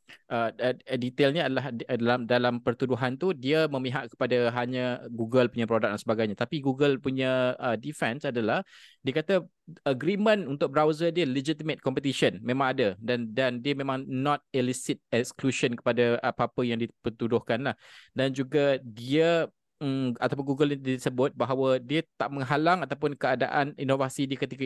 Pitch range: 125-145 Hz